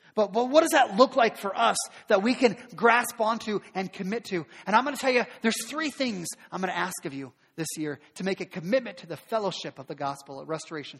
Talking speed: 250 wpm